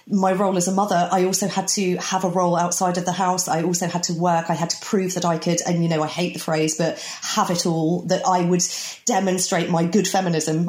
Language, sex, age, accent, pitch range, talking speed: English, female, 30-49, British, 165-215 Hz, 260 wpm